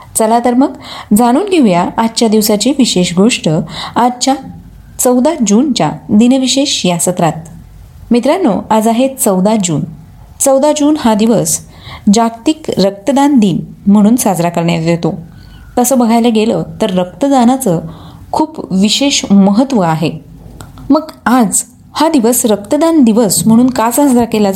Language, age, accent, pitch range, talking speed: Marathi, 20-39, native, 190-255 Hz, 80 wpm